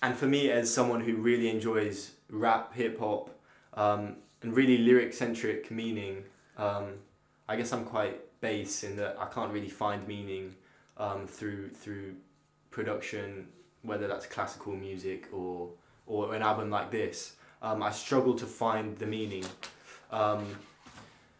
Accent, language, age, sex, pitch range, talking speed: British, English, 10-29, male, 105-120 Hz, 145 wpm